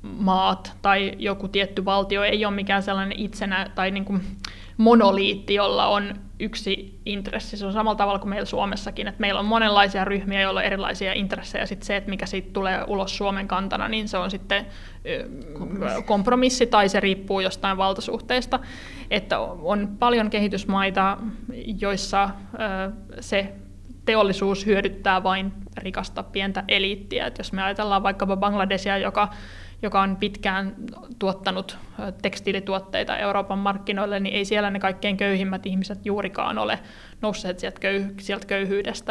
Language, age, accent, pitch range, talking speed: Finnish, 20-39, native, 195-210 Hz, 140 wpm